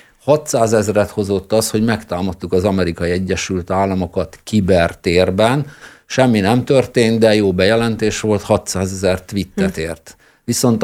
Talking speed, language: 135 wpm, Hungarian